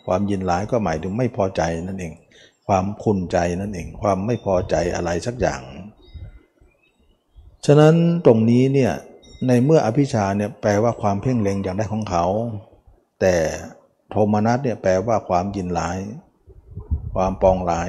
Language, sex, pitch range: Thai, male, 90-115 Hz